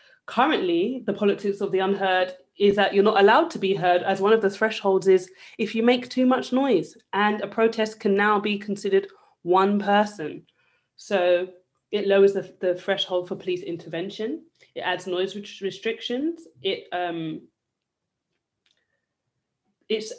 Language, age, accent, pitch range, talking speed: English, 30-49, British, 170-210 Hz, 150 wpm